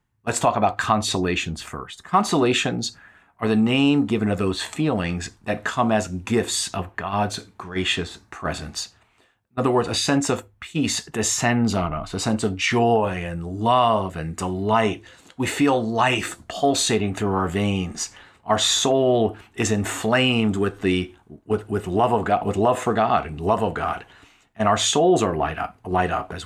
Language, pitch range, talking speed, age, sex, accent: English, 95-115 Hz, 170 wpm, 40-59, male, American